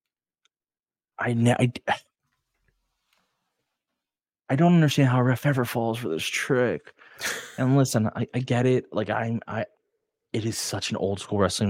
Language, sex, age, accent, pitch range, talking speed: English, male, 20-39, American, 95-125 Hz, 150 wpm